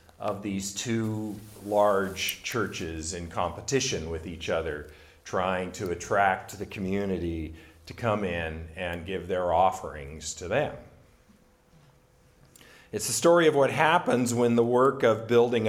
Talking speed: 135 wpm